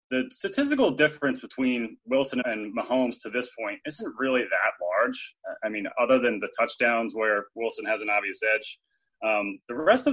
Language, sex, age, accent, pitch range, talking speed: English, male, 20-39, American, 120-175 Hz, 180 wpm